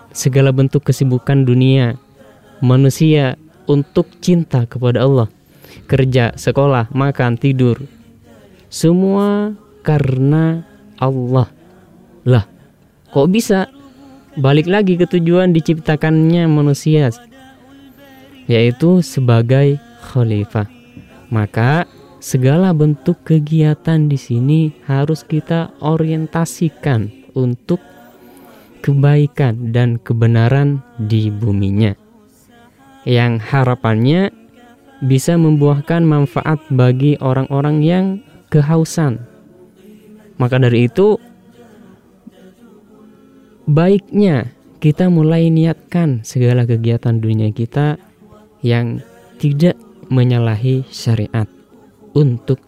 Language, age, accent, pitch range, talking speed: Indonesian, 20-39, native, 125-170 Hz, 75 wpm